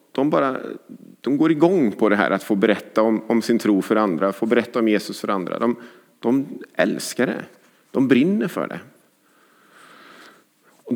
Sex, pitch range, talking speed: male, 100-125 Hz, 175 wpm